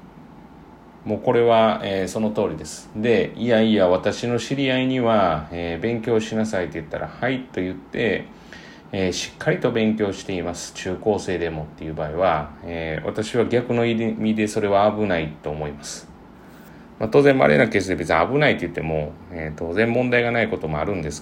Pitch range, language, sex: 85-120 Hz, Japanese, male